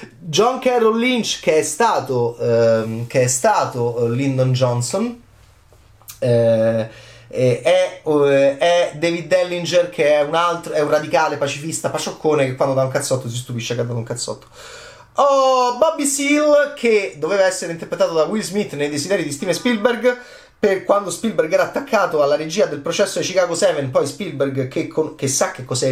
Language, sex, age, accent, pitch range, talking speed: Italian, male, 30-49, native, 125-190 Hz, 175 wpm